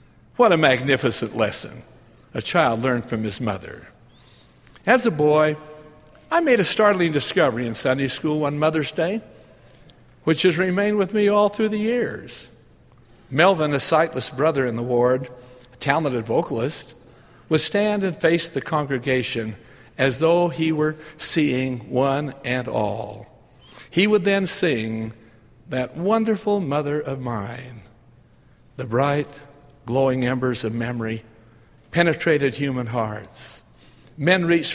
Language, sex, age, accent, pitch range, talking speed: English, male, 60-79, American, 120-155 Hz, 135 wpm